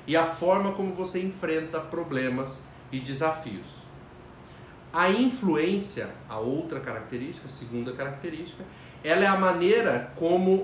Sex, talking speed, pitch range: male, 125 wpm, 135-185 Hz